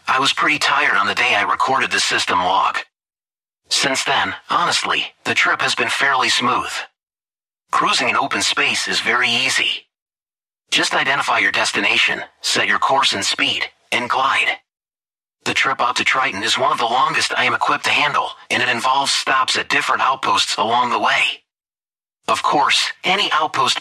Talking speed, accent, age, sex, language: 170 wpm, American, 40-59, male, English